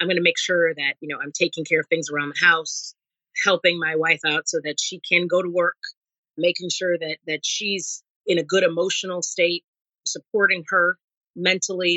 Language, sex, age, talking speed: English, female, 30-49, 200 wpm